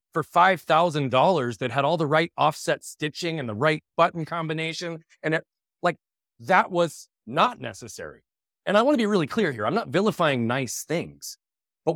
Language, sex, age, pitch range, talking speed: English, male, 30-49, 110-160 Hz, 170 wpm